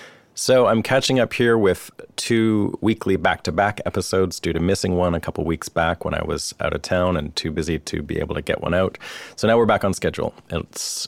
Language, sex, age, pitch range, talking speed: English, male, 30-49, 85-100 Hz, 220 wpm